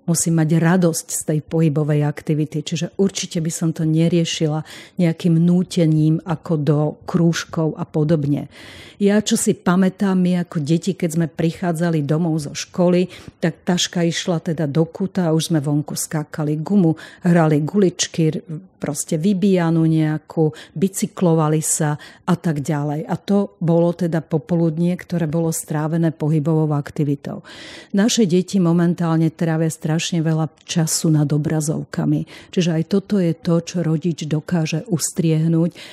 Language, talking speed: Slovak, 140 wpm